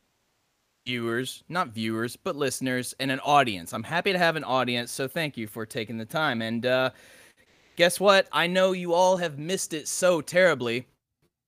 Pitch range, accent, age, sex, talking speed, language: 120-170 Hz, American, 30-49, male, 180 wpm, English